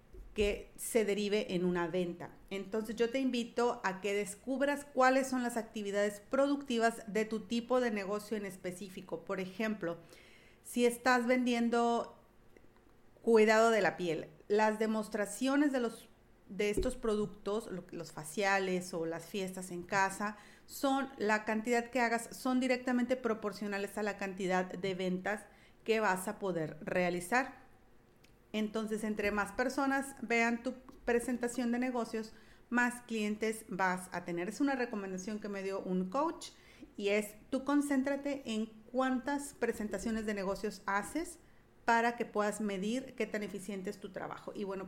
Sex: female